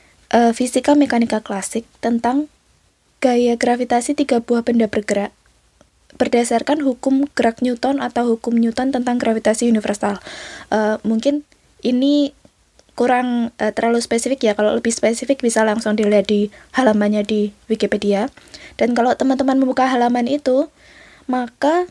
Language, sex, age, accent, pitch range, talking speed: Indonesian, female, 20-39, native, 225-275 Hz, 125 wpm